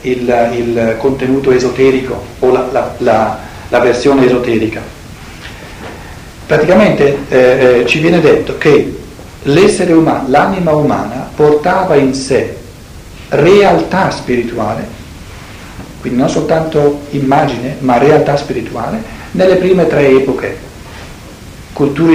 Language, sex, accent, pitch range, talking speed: Italian, male, native, 120-155 Hz, 105 wpm